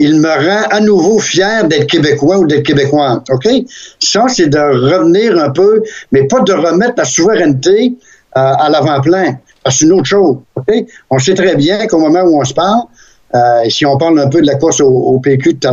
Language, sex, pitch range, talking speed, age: French, male, 135-190 Hz, 225 wpm, 60-79